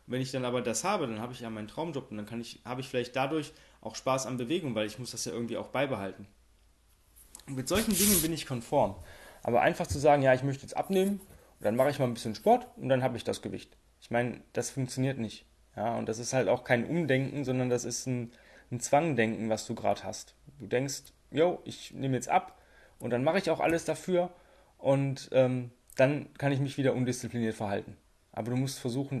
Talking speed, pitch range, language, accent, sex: 230 wpm, 115-140 Hz, German, German, male